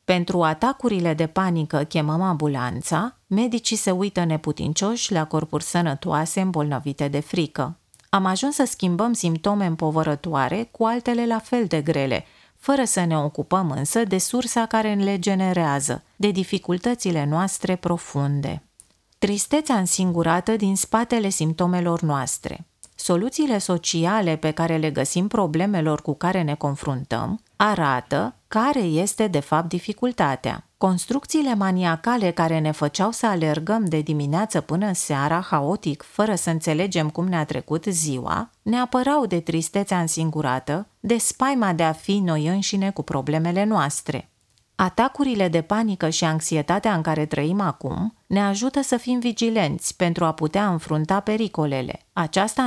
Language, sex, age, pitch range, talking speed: Romanian, female, 30-49, 155-210 Hz, 135 wpm